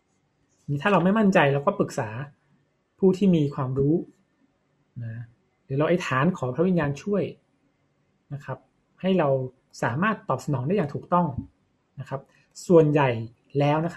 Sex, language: male, Thai